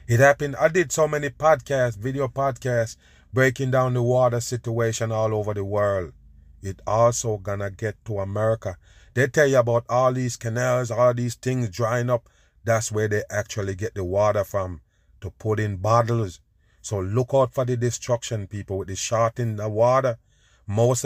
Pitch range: 100-120 Hz